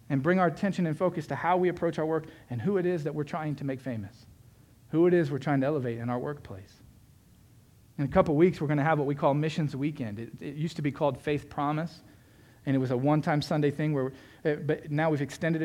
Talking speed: 250 wpm